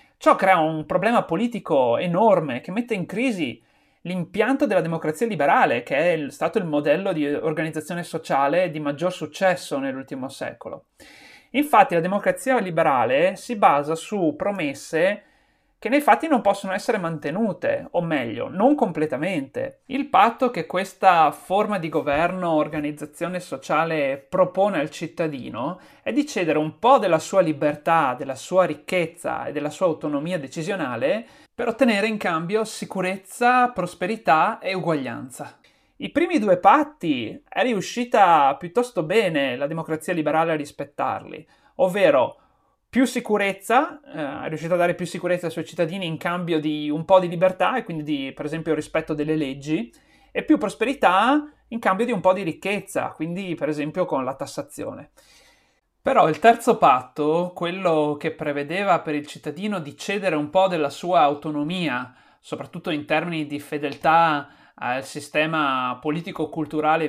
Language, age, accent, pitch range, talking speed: Italian, 30-49, native, 155-210 Hz, 145 wpm